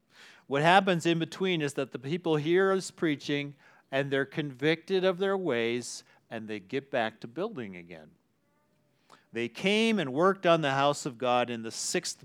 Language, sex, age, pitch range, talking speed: English, male, 40-59, 120-170 Hz, 175 wpm